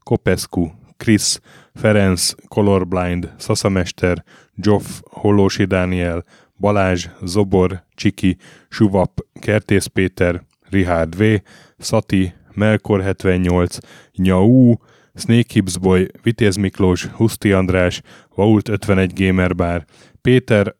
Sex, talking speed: male, 80 wpm